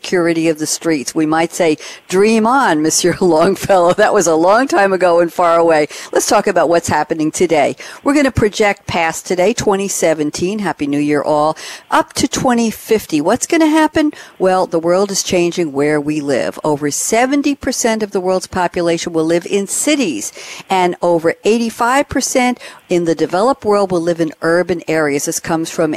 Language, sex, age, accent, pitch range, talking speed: English, female, 60-79, American, 160-210 Hz, 175 wpm